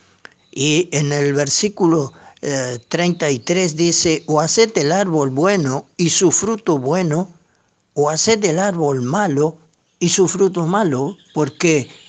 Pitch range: 145-190 Hz